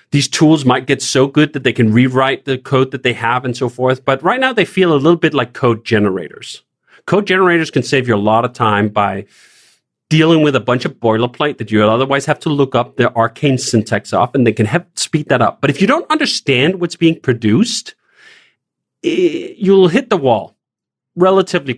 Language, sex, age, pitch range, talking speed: English, male, 40-59, 110-155 Hz, 215 wpm